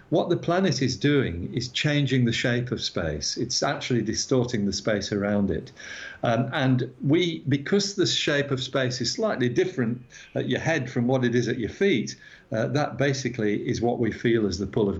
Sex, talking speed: male, 200 wpm